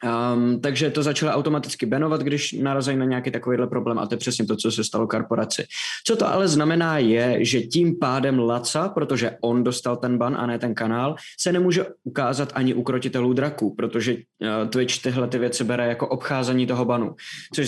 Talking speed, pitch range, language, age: 190 wpm, 120-145 Hz, Czech, 20-39